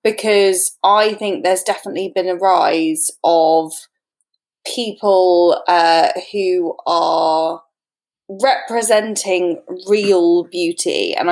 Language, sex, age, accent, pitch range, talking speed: English, female, 20-39, British, 175-220 Hz, 90 wpm